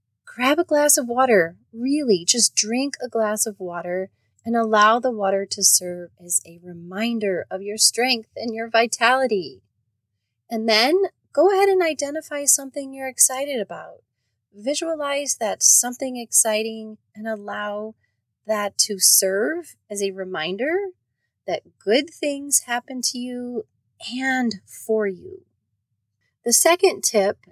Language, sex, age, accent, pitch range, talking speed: English, female, 30-49, American, 195-255 Hz, 135 wpm